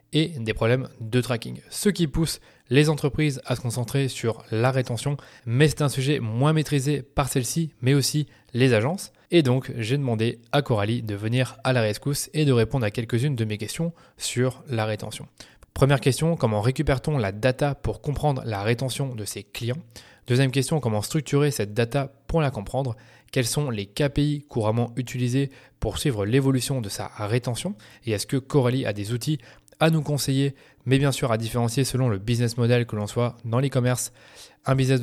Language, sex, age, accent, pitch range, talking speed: French, male, 20-39, French, 115-140 Hz, 190 wpm